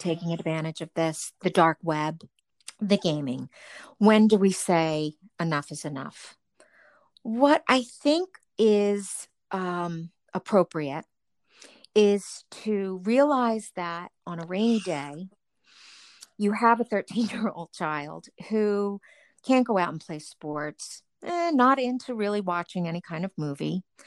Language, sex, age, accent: English, female, 50-69, American